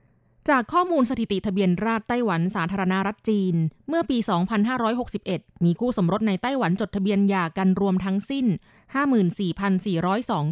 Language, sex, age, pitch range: Thai, female, 20-39, 180-240 Hz